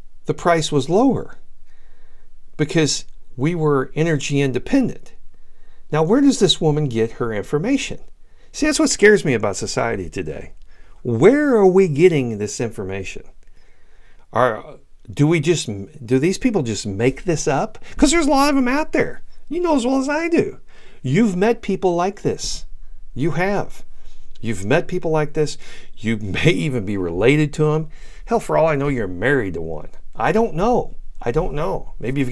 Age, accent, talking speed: 50-69, American, 175 wpm